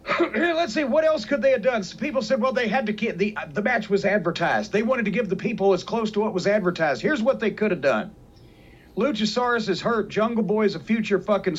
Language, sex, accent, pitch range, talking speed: English, male, American, 190-240 Hz, 250 wpm